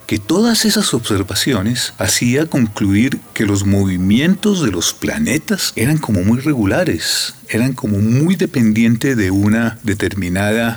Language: Spanish